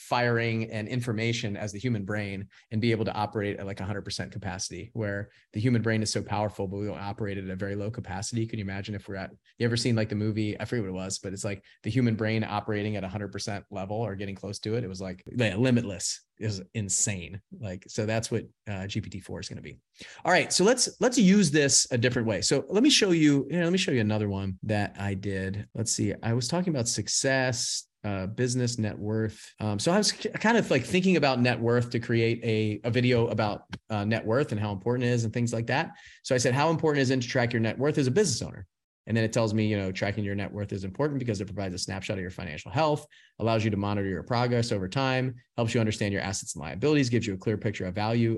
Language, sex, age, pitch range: English, male, 30-49, 100-125 Hz